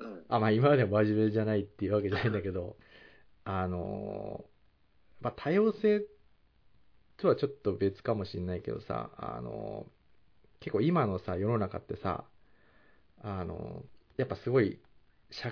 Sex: male